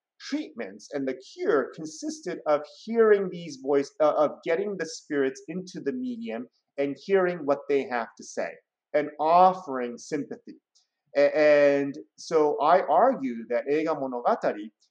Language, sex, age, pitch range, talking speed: English, male, 30-49, 125-160 Hz, 135 wpm